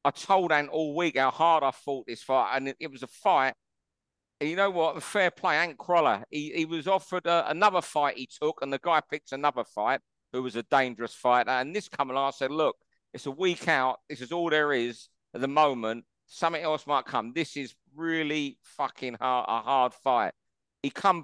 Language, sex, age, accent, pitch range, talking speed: English, male, 50-69, British, 130-165 Hz, 225 wpm